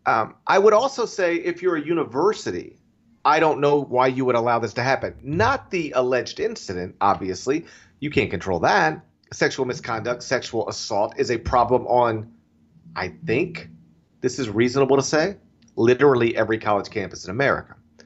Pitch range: 110-170 Hz